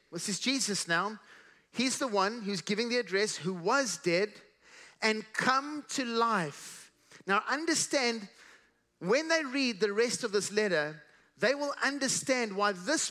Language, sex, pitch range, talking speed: English, male, 200-260 Hz, 150 wpm